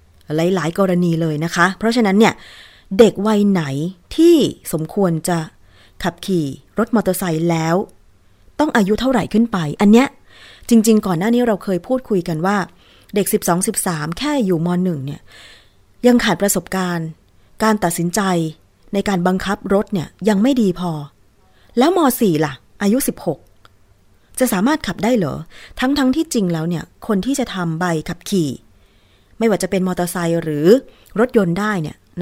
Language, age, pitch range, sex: Thai, 20-39, 165-220 Hz, female